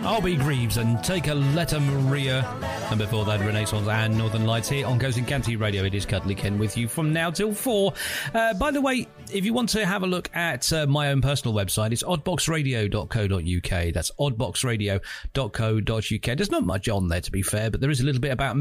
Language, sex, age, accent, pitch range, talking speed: English, male, 40-59, British, 105-150 Hz, 215 wpm